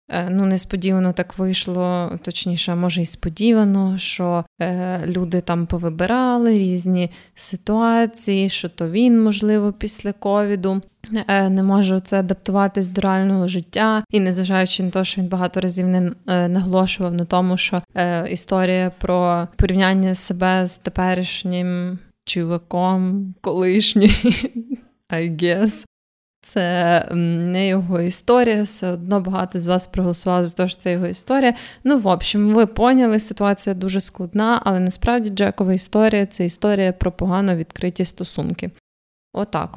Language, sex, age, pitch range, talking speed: Ukrainian, female, 20-39, 180-205 Hz, 135 wpm